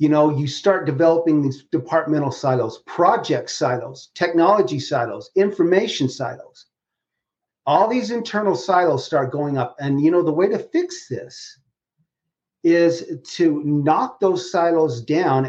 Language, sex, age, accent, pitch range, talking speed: English, male, 40-59, American, 135-190 Hz, 135 wpm